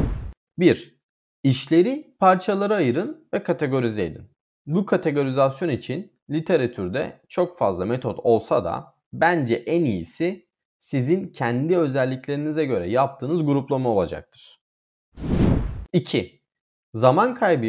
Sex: male